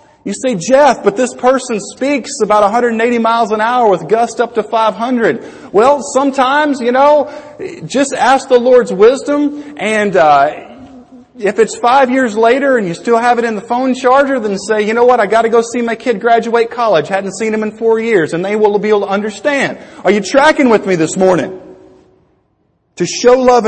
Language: English